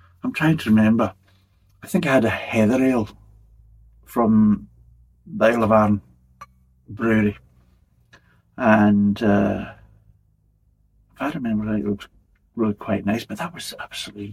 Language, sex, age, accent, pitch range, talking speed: English, male, 60-79, British, 95-115 Hz, 120 wpm